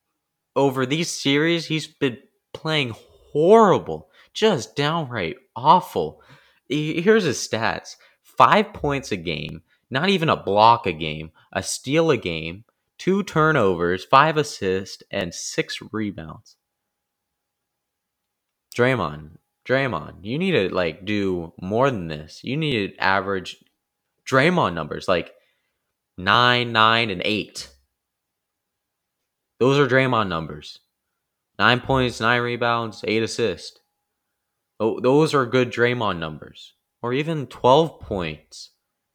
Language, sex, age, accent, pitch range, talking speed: English, male, 20-39, American, 95-145 Hz, 115 wpm